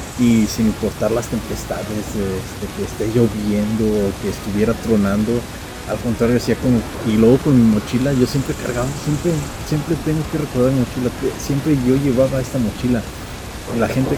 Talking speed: 170 wpm